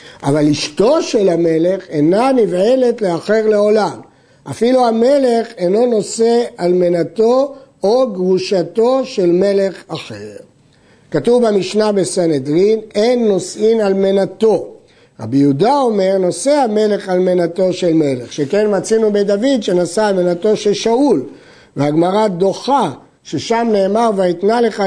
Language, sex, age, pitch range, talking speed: Hebrew, male, 50-69, 170-225 Hz, 120 wpm